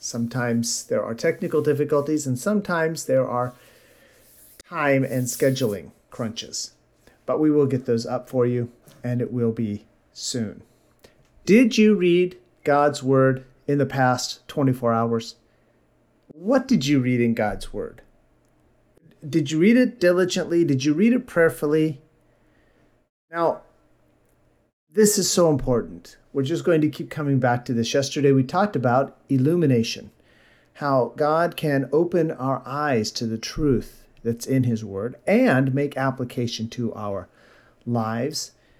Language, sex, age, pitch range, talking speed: English, male, 40-59, 125-165 Hz, 140 wpm